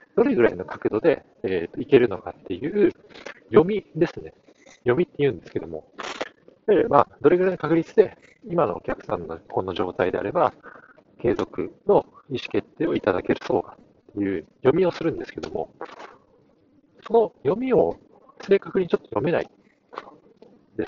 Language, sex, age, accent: Japanese, male, 50-69, native